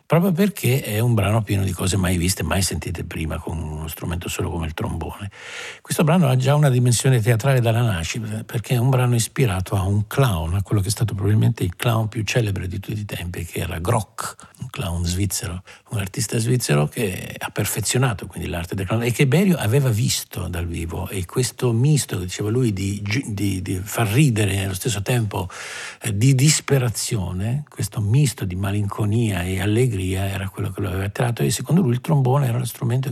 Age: 60-79